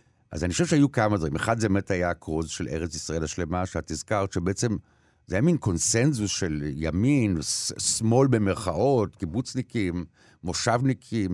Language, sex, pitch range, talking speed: Hebrew, male, 90-130 Hz, 150 wpm